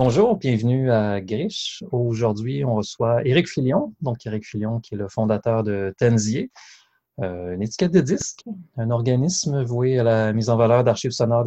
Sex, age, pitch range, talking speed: male, 30-49, 110-135 Hz, 165 wpm